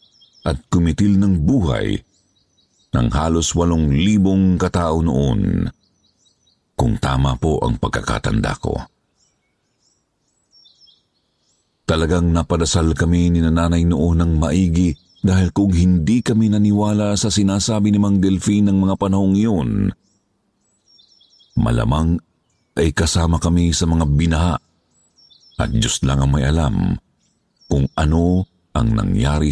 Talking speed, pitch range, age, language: 110 wpm, 80-100 Hz, 50-69, Filipino